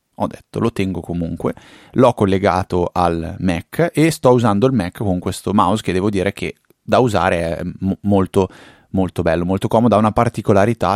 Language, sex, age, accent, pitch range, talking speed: Italian, male, 30-49, native, 90-115 Hz, 180 wpm